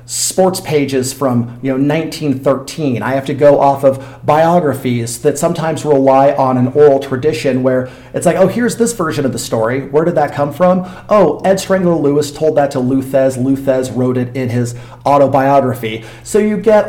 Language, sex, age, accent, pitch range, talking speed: English, male, 40-59, American, 130-155 Hz, 180 wpm